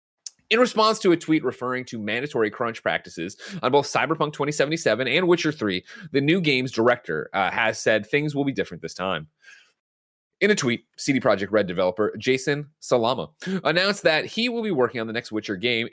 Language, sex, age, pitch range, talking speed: English, male, 30-49, 105-155 Hz, 190 wpm